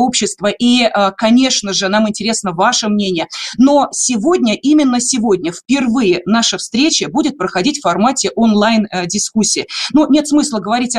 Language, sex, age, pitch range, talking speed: Russian, female, 30-49, 210-270 Hz, 125 wpm